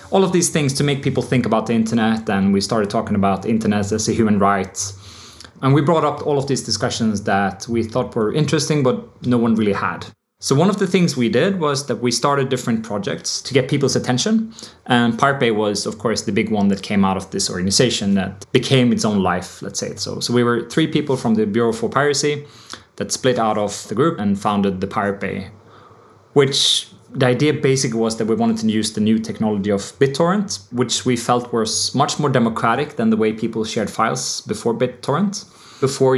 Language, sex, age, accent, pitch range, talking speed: English, male, 20-39, Norwegian, 105-130 Hz, 220 wpm